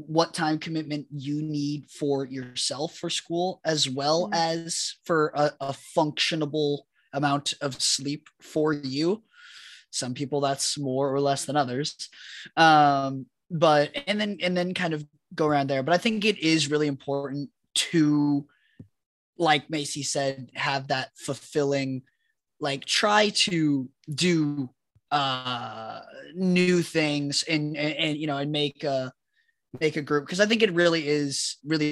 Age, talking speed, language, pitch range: 20-39, 150 wpm, English, 135-160 Hz